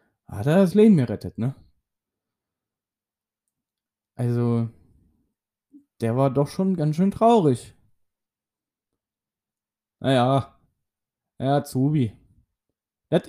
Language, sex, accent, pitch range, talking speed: German, male, German, 100-140 Hz, 85 wpm